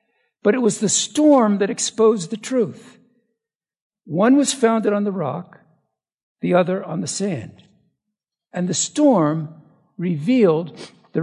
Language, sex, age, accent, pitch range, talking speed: English, male, 60-79, American, 180-235 Hz, 135 wpm